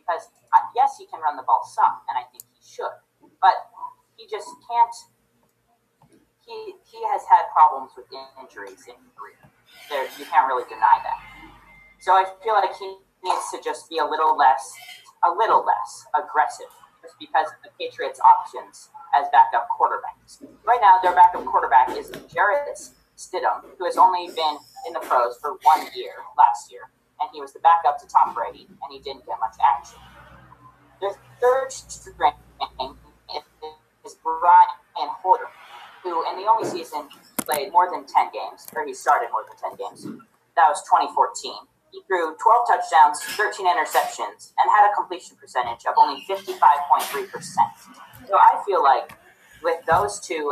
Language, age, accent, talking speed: English, 30-49, American, 165 wpm